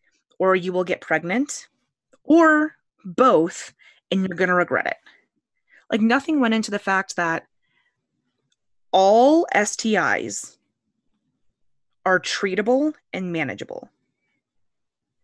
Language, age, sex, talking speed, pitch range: English, 20-39, female, 100 wpm, 155-210 Hz